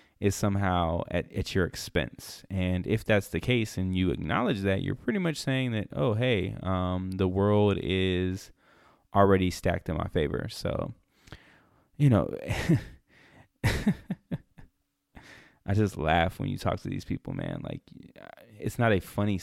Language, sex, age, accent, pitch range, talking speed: English, male, 20-39, American, 90-105 Hz, 150 wpm